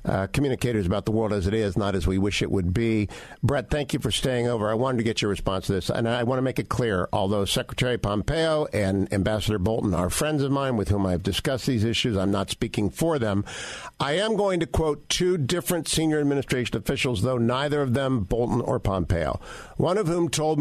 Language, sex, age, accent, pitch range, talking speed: English, male, 50-69, American, 115-155 Hz, 230 wpm